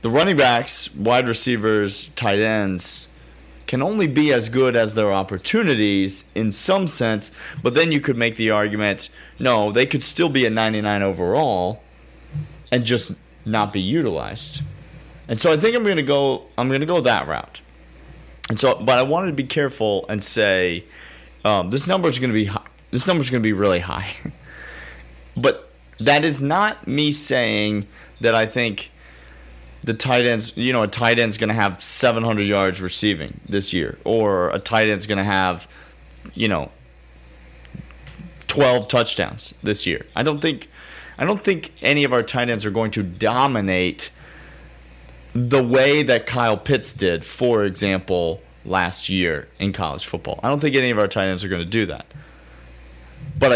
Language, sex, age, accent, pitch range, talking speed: English, male, 30-49, American, 90-130 Hz, 175 wpm